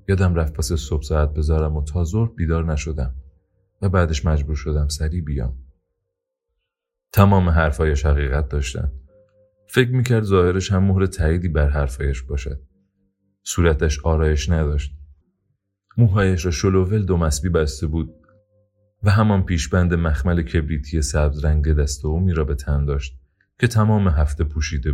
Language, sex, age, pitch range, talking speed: Persian, male, 30-49, 75-95 Hz, 140 wpm